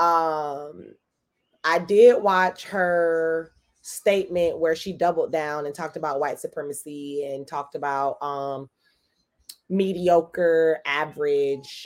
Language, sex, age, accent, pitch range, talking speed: English, female, 20-39, American, 165-230 Hz, 105 wpm